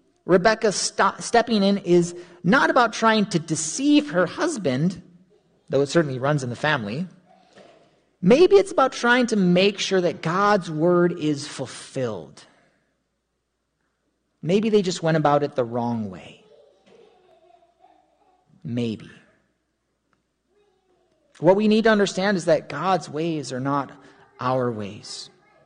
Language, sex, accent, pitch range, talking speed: English, male, American, 140-205 Hz, 125 wpm